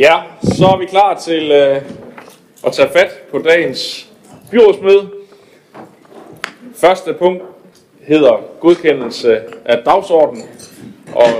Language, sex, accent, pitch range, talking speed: Danish, male, native, 120-180 Hz, 105 wpm